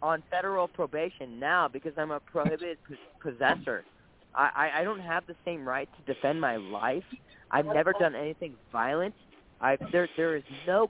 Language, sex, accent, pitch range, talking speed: English, male, American, 155-200 Hz, 170 wpm